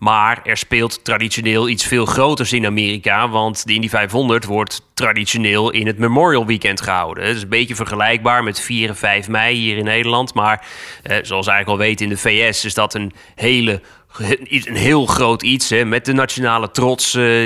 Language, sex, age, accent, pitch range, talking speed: Dutch, male, 30-49, Dutch, 110-130 Hz, 185 wpm